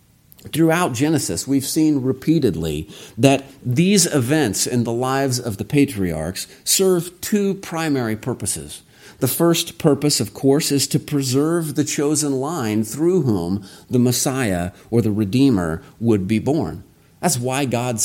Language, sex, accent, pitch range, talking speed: English, male, American, 105-150 Hz, 140 wpm